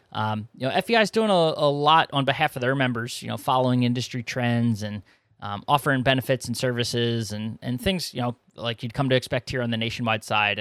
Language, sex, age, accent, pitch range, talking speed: English, male, 20-39, American, 115-145 Hz, 225 wpm